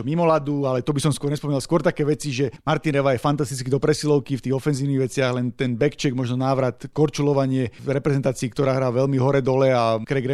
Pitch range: 125-145 Hz